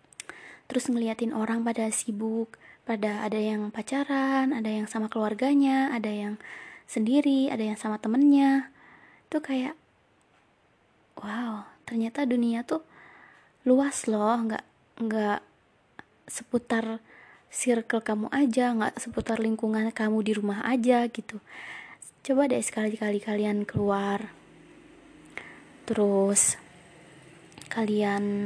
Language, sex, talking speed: Indonesian, female, 105 wpm